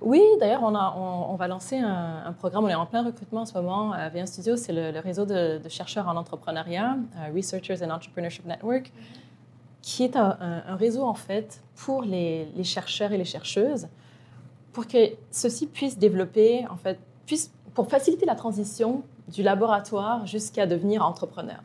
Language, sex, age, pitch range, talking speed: French, female, 20-39, 175-215 Hz, 185 wpm